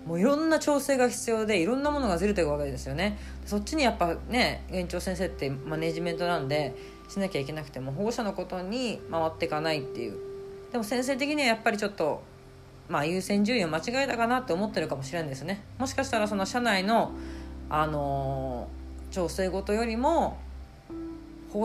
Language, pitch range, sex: Japanese, 145-230 Hz, female